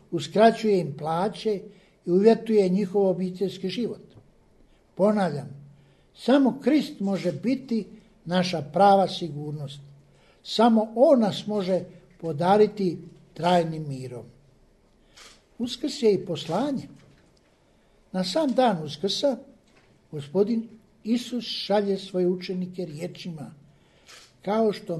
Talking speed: 95 wpm